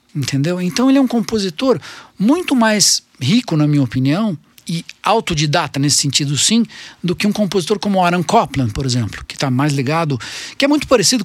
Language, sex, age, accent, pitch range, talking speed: Portuguese, male, 50-69, Brazilian, 145-205 Hz, 180 wpm